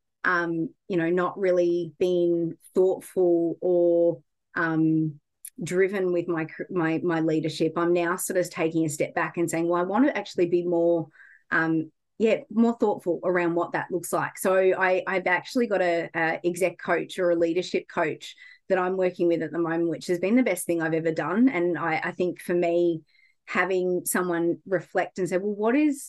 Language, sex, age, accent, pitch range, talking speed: English, female, 30-49, Australian, 165-185 Hz, 195 wpm